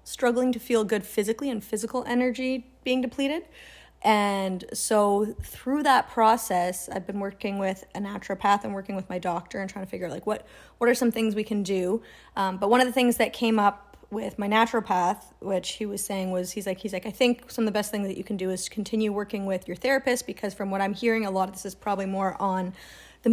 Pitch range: 195-230 Hz